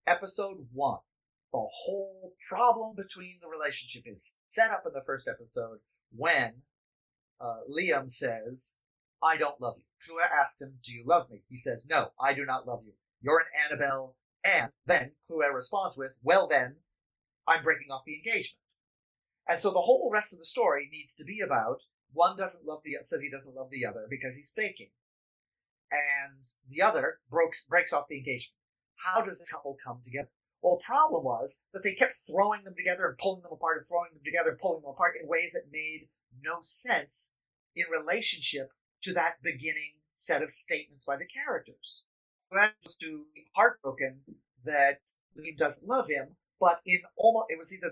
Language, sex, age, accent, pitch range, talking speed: English, male, 30-49, American, 135-195 Hz, 185 wpm